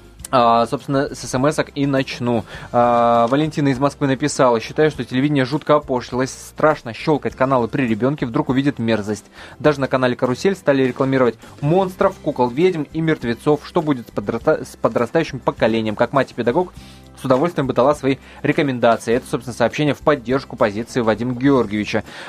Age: 20-39